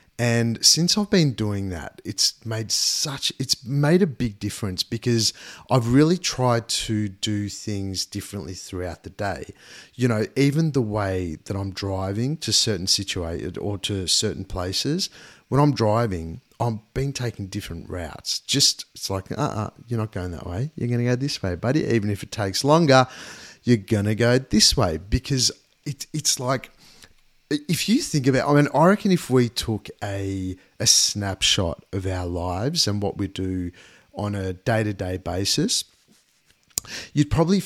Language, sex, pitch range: English, male, 95-125 Hz